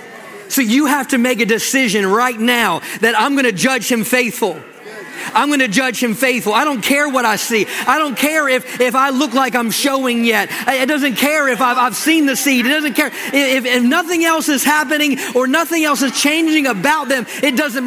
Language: English